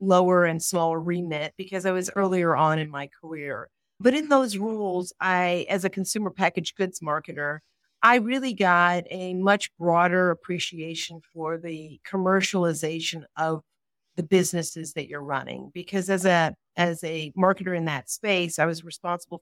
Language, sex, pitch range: English, female, 160-190 Hz